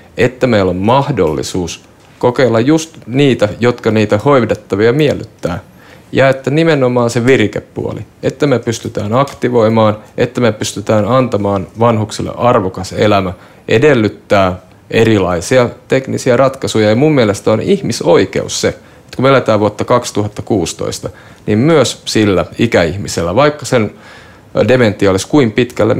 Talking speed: 120 wpm